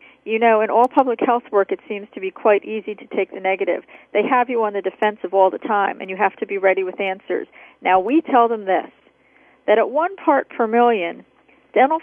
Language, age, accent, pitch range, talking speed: English, 40-59, American, 205-270 Hz, 230 wpm